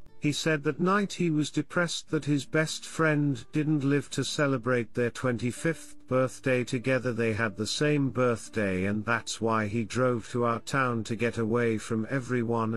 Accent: British